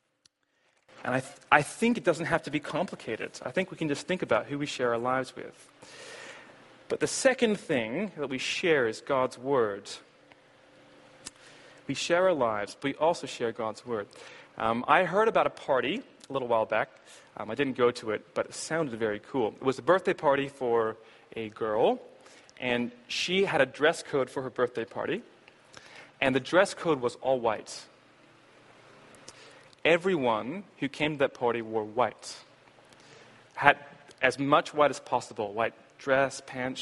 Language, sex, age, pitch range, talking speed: English, male, 30-49, 120-165 Hz, 175 wpm